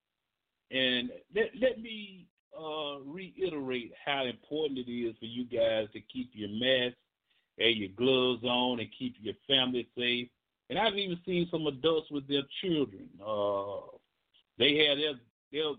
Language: English